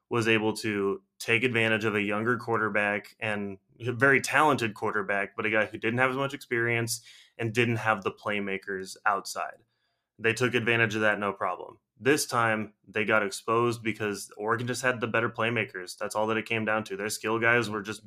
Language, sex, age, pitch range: English, male, 20-39, 105-120 Hz